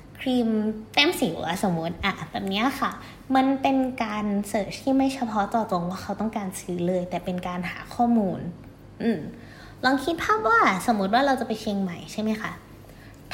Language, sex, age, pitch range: Thai, female, 20-39, 185-255 Hz